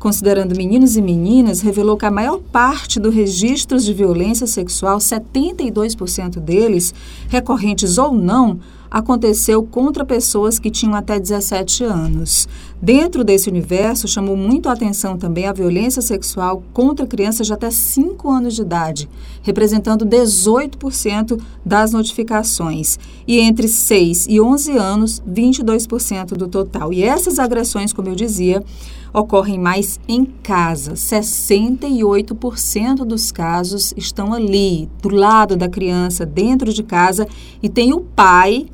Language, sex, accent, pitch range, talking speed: Portuguese, female, Brazilian, 180-230 Hz, 130 wpm